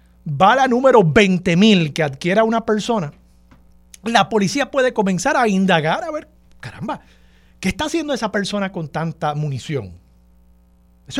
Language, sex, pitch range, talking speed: Spanish, male, 125-200 Hz, 140 wpm